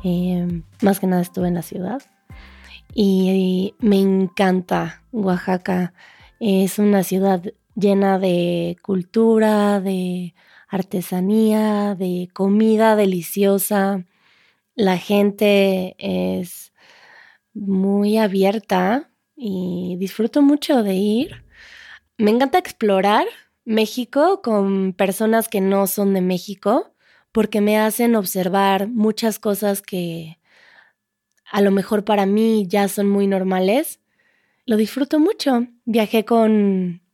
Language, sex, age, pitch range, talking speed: Spanish, female, 20-39, 185-215 Hz, 105 wpm